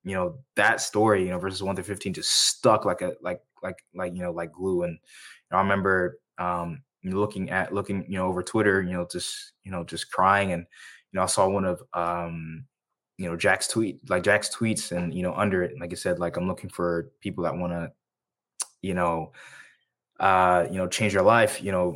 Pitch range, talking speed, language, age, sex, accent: 90-105 Hz, 220 wpm, English, 20-39, male, American